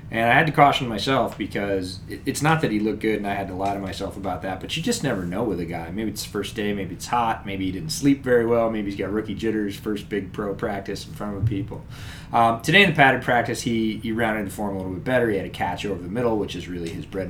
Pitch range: 90-115 Hz